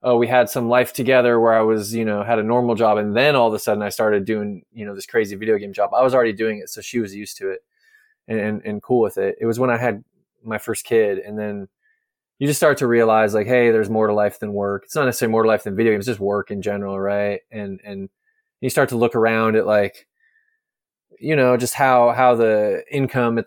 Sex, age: male, 20-39